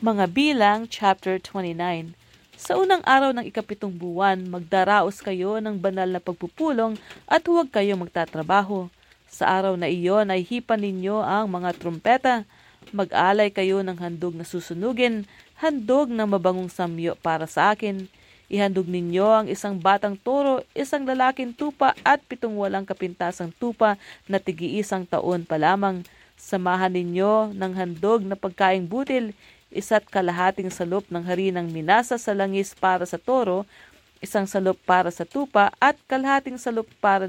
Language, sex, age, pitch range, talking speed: English, female, 40-59, 180-220 Hz, 145 wpm